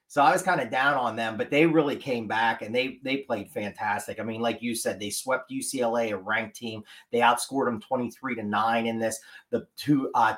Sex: male